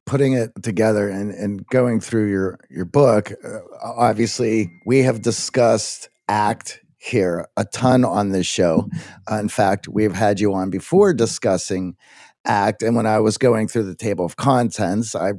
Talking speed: 170 wpm